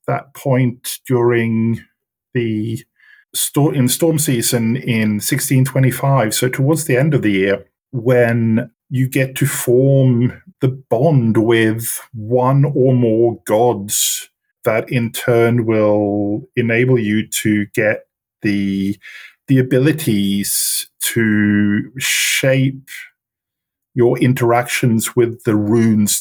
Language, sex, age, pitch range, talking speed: English, male, 50-69, 110-135 Hz, 105 wpm